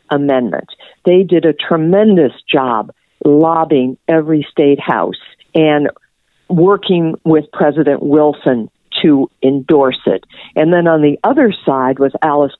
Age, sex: 50-69, female